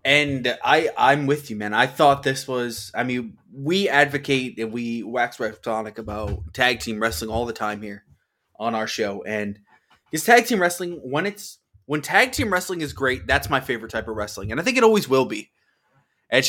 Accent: American